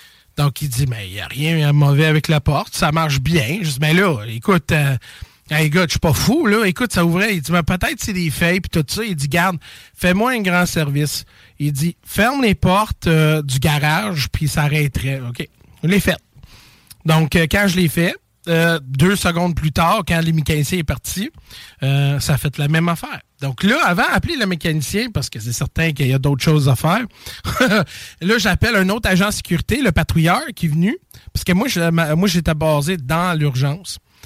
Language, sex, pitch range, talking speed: French, male, 145-180 Hz, 220 wpm